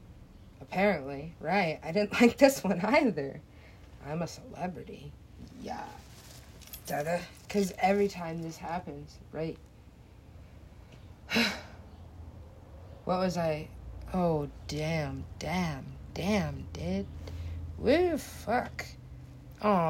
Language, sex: English, female